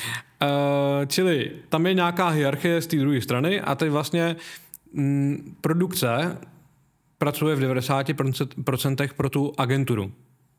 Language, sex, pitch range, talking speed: Czech, male, 130-150 Hz, 110 wpm